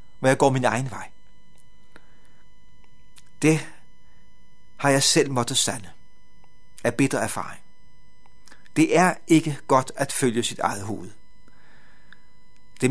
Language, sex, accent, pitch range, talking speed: Danish, male, native, 130-175 Hz, 115 wpm